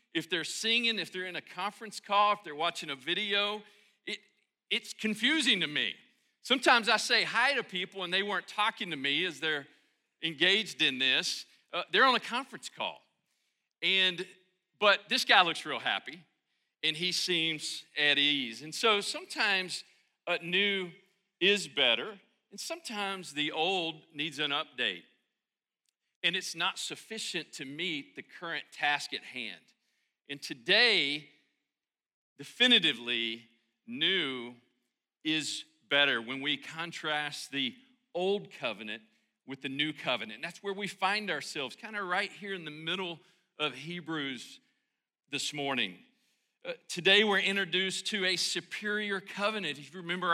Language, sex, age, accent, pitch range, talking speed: English, male, 40-59, American, 150-200 Hz, 145 wpm